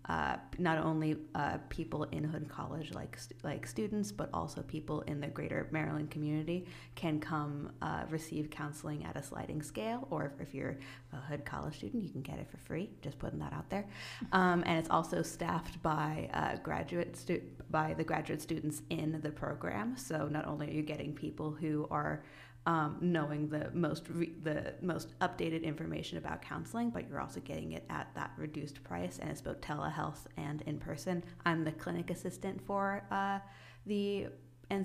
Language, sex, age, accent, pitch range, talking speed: English, female, 30-49, American, 145-170 Hz, 185 wpm